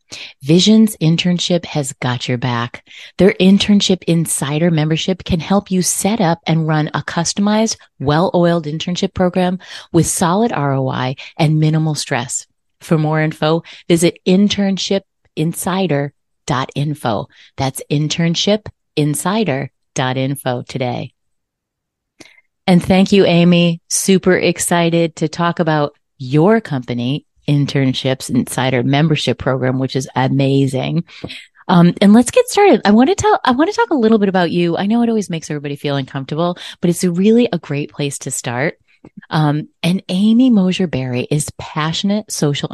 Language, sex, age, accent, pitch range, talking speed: English, female, 30-49, American, 145-190 Hz, 135 wpm